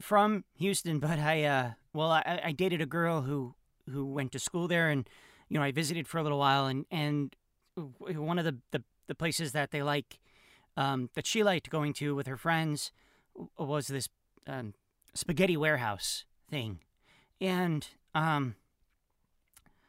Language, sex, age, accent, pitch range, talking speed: English, male, 40-59, American, 135-170 Hz, 165 wpm